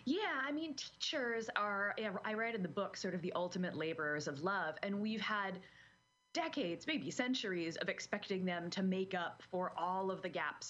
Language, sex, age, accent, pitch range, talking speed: English, female, 20-39, American, 170-210 Hz, 185 wpm